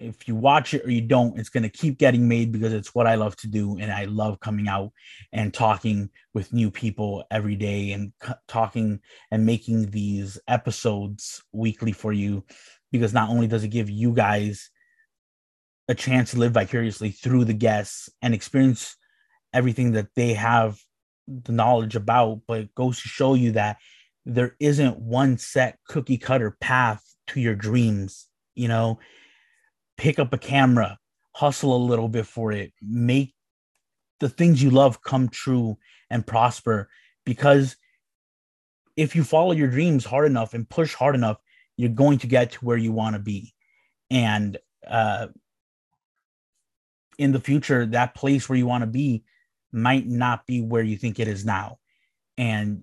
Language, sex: English, male